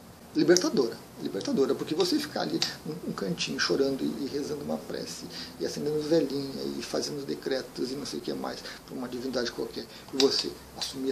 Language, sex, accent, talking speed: Portuguese, male, Brazilian, 175 wpm